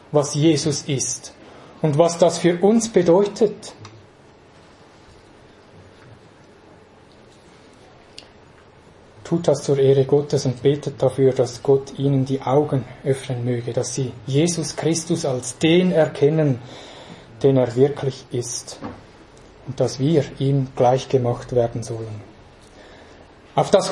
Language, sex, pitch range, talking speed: English, male, 130-185 Hz, 110 wpm